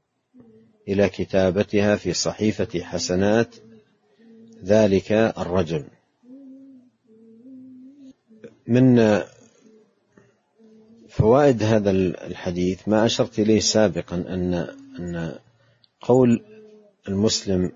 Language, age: Arabic, 50-69